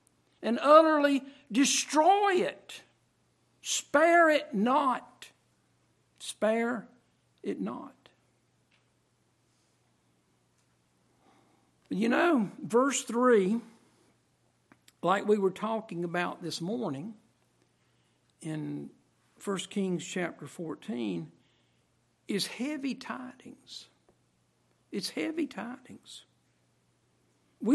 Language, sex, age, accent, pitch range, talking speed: English, male, 60-79, American, 190-255 Hz, 70 wpm